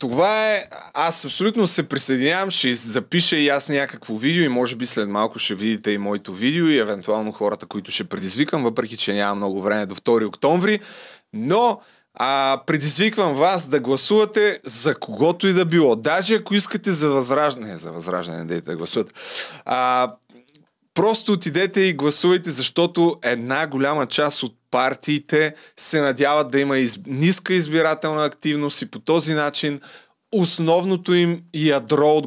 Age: 20-39